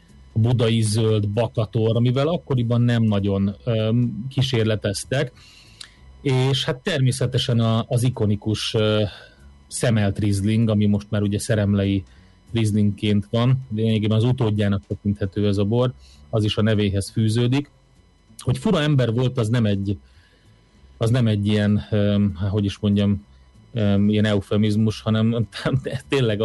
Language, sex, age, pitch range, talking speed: Hungarian, male, 30-49, 105-120 Hz, 130 wpm